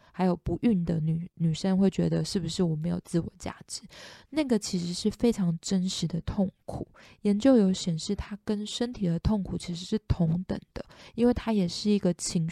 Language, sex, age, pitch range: Chinese, female, 20-39, 175-215 Hz